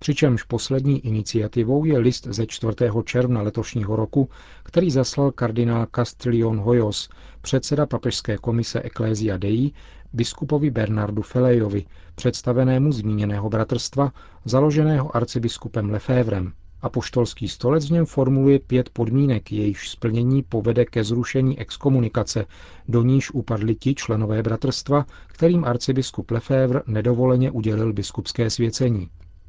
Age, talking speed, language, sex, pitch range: 40-59, 110 wpm, Czech, male, 110-130 Hz